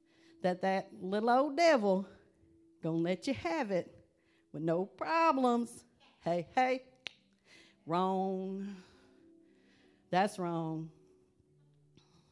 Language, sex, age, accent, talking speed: English, female, 40-59, American, 90 wpm